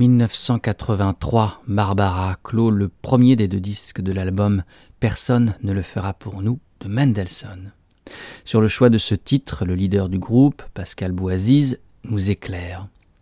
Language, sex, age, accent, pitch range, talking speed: French, male, 40-59, French, 95-125 Hz, 155 wpm